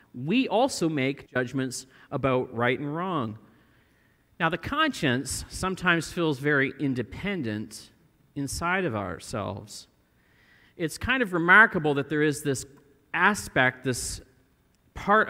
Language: English